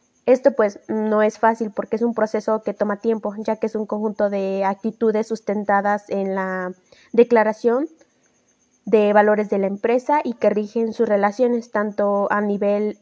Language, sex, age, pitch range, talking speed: Spanish, female, 20-39, 200-235 Hz, 165 wpm